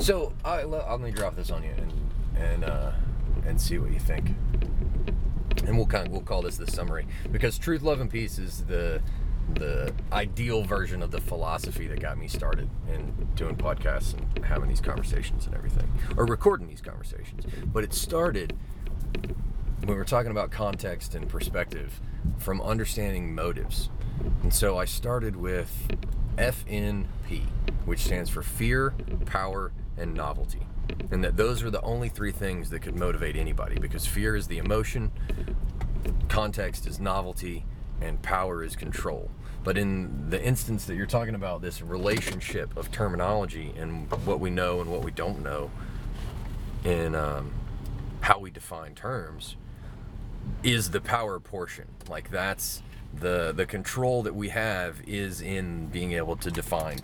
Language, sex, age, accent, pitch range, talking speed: English, male, 30-49, American, 85-110 Hz, 160 wpm